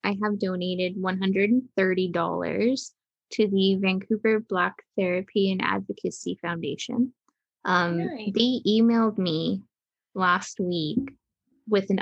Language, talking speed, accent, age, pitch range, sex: English, 100 wpm, American, 10-29, 175-225 Hz, female